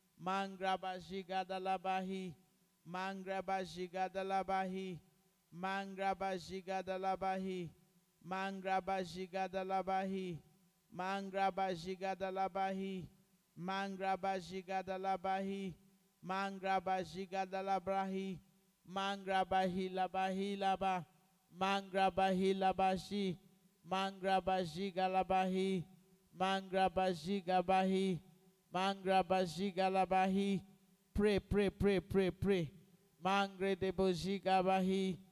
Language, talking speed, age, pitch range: English, 55 wpm, 50-69, 185-195 Hz